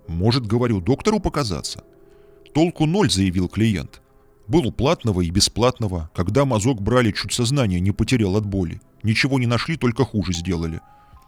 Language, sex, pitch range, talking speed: Russian, male, 95-135 Hz, 150 wpm